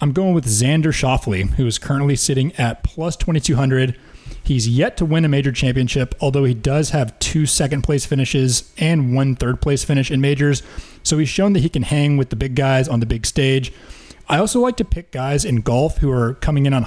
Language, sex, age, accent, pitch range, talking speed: English, male, 30-49, American, 125-150 Hz, 215 wpm